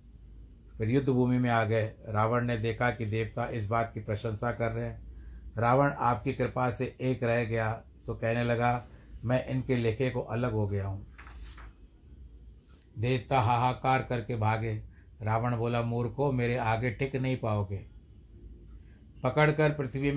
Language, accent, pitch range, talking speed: Hindi, native, 105-125 Hz, 145 wpm